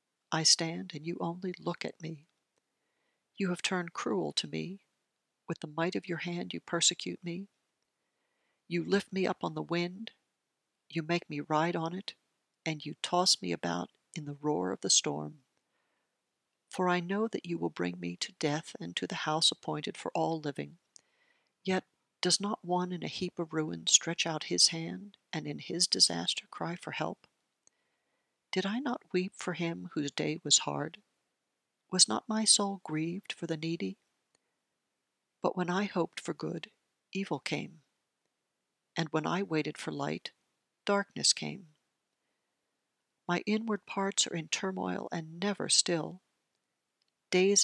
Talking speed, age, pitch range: 160 wpm, 60-79, 155-190 Hz